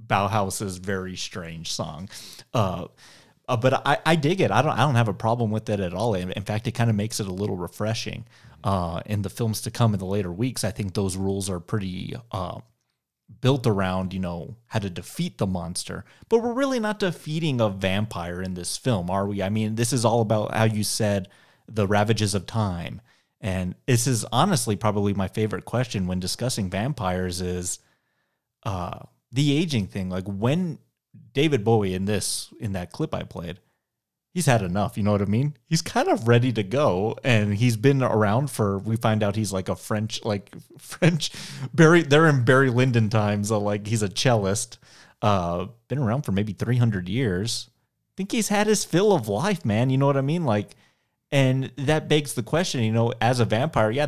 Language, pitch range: English, 100-130 Hz